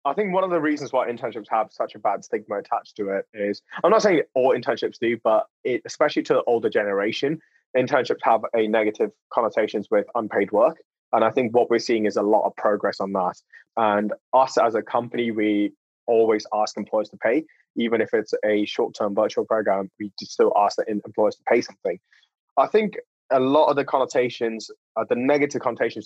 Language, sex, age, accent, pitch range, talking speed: English, male, 20-39, British, 105-145 Hz, 205 wpm